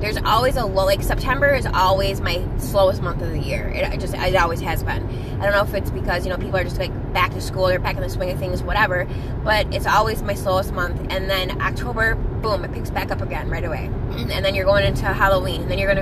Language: English